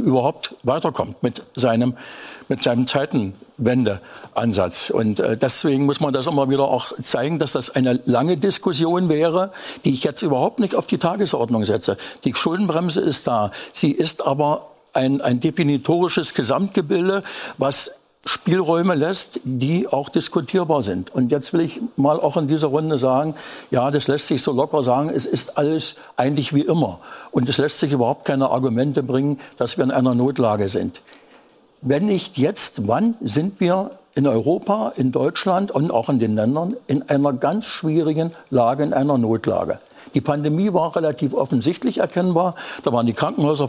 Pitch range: 130-170 Hz